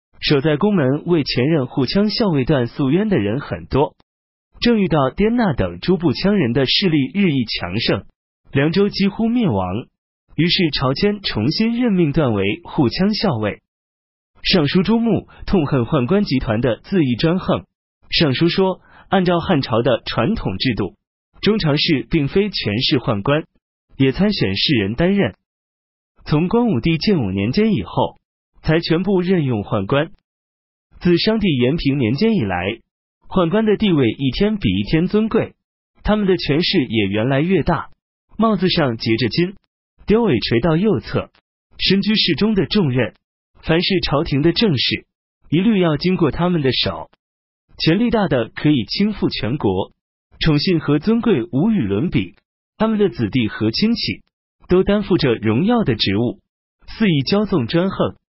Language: Chinese